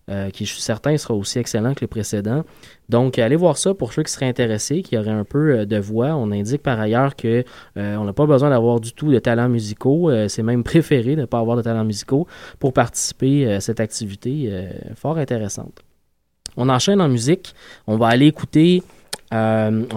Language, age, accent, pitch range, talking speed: French, 20-39, Canadian, 110-140 Hz, 205 wpm